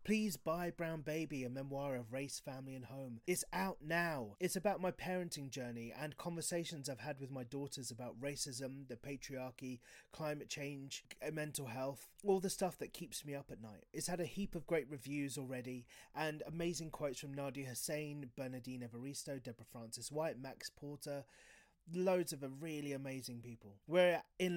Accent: British